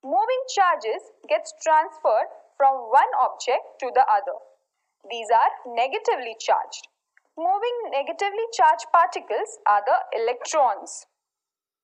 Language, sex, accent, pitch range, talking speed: Marathi, female, native, 275-420 Hz, 105 wpm